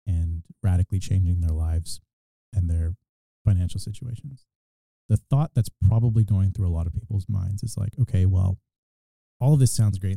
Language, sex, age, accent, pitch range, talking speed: English, male, 30-49, American, 90-110 Hz, 170 wpm